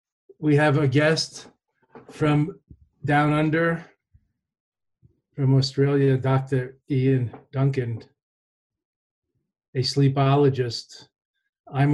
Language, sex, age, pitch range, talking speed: English, male, 40-59, 135-150 Hz, 75 wpm